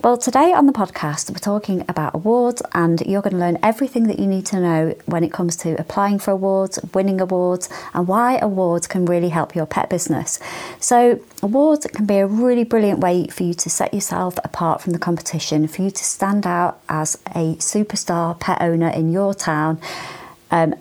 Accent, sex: British, female